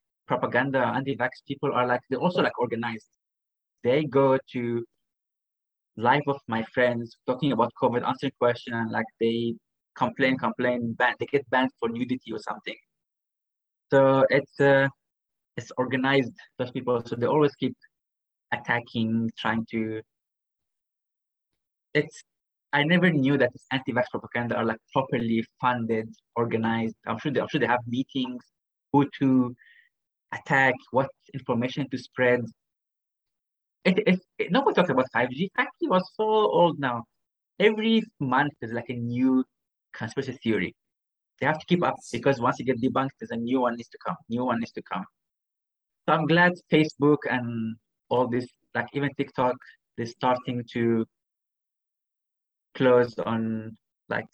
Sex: male